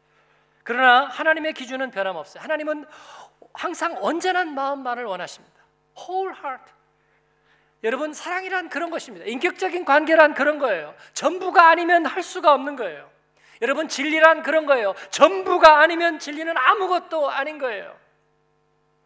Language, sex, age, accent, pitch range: Korean, male, 40-59, native, 205-295 Hz